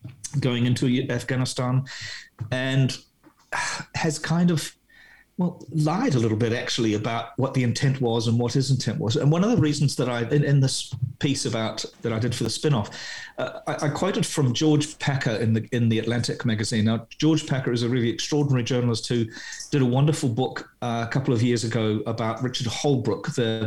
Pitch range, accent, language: 115-140 Hz, British, English